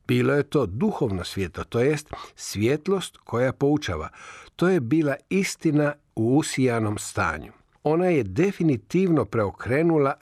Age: 50-69